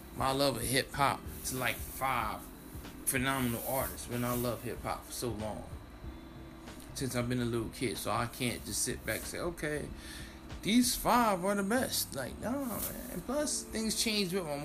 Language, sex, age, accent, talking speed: English, male, 20-39, American, 180 wpm